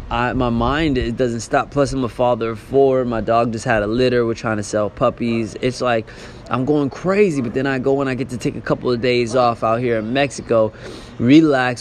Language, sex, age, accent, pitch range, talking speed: English, male, 20-39, American, 115-140 Hz, 240 wpm